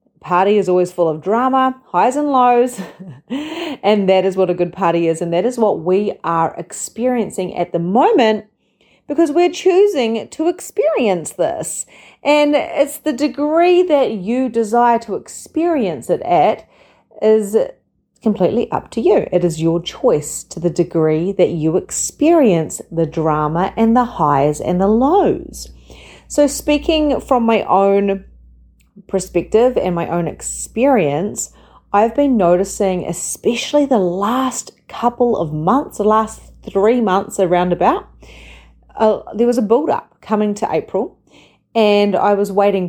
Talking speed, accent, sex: 145 wpm, Australian, female